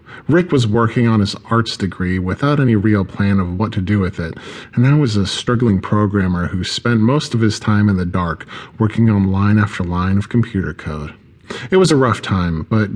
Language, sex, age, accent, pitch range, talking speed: English, male, 40-59, American, 100-120 Hz, 215 wpm